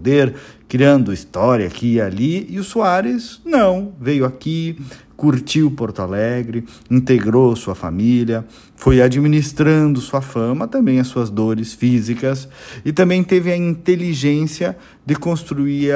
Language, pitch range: Portuguese, 105-150 Hz